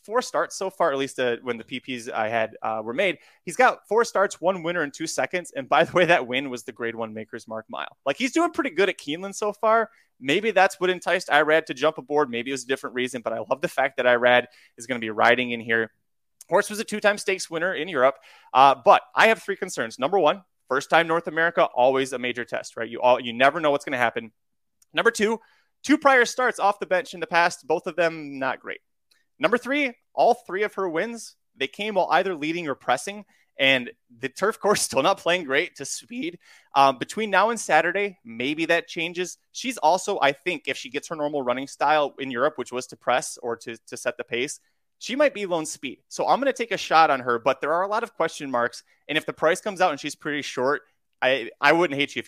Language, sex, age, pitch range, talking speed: English, male, 30-49, 130-200 Hz, 250 wpm